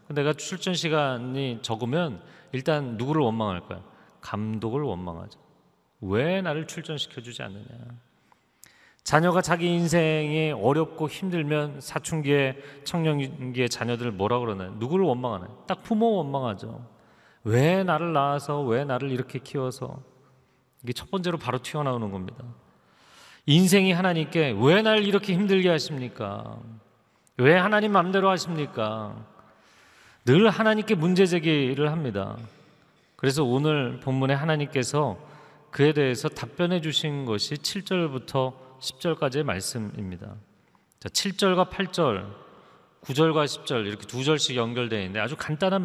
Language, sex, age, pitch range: Korean, male, 40-59, 120-160 Hz